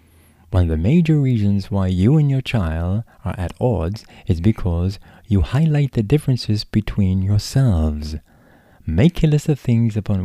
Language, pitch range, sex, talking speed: English, 85-115 Hz, male, 160 wpm